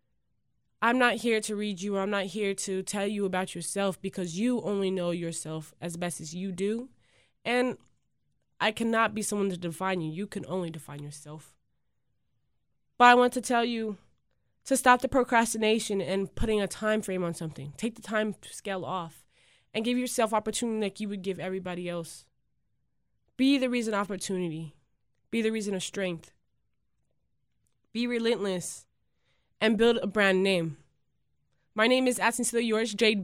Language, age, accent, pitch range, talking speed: English, 20-39, American, 175-230 Hz, 170 wpm